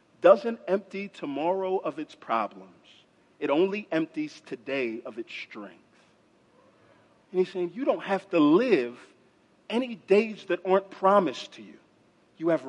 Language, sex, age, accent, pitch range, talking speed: English, male, 50-69, American, 135-215 Hz, 140 wpm